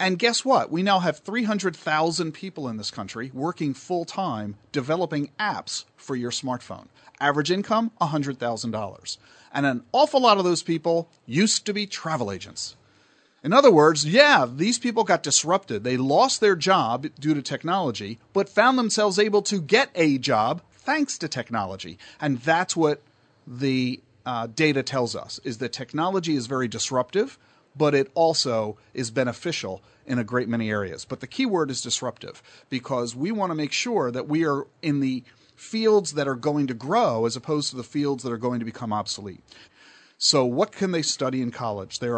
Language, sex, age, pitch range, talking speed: English, male, 40-59, 120-165 Hz, 180 wpm